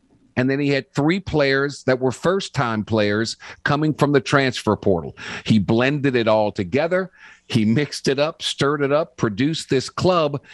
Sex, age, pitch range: male, 50-69, 115-150 Hz